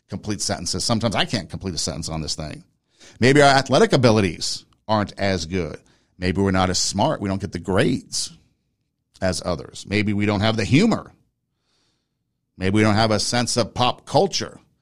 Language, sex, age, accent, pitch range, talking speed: English, male, 40-59, American, 95-130 Hz, 180 wpm